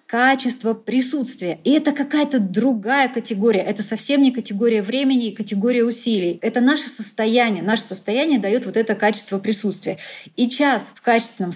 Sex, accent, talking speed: female, native, 150 wpm